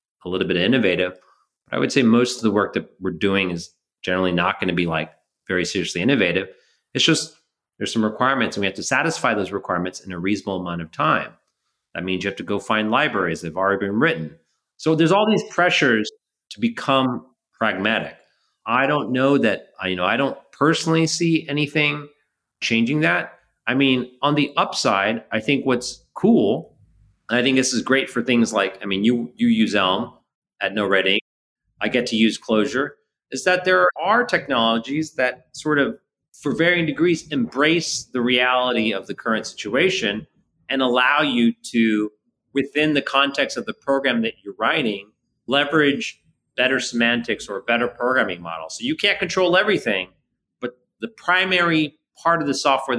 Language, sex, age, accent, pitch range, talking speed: English, male, 30-49, American, 105-150 Hz, 180 wpm